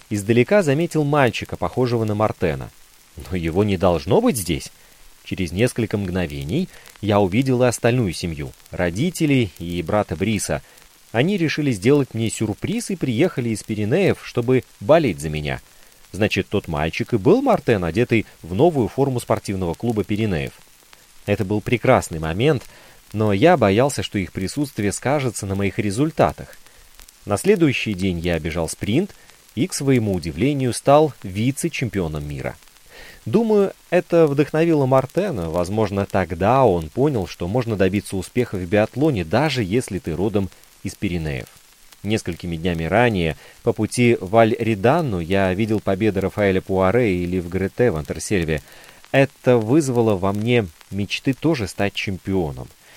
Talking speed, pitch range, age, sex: 135 wpm, 95-130 Hz, 30-49, male